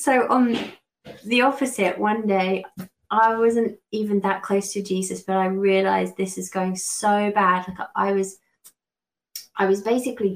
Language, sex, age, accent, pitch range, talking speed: English, female, 20-39, British, 185-210 Hz, 160 wpm